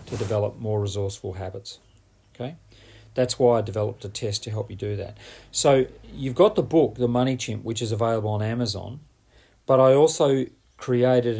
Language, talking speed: English, 180 wpm